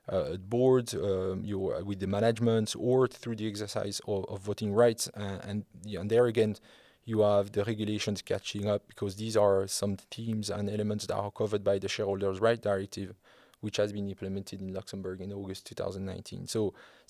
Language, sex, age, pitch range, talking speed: English, male, 20-39, 100-115 Hz, 170 wpm